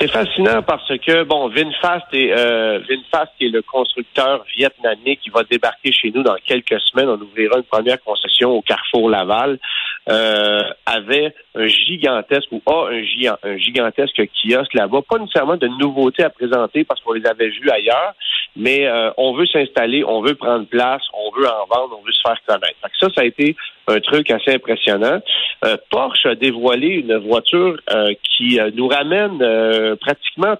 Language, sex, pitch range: French, male, 110-145 Hz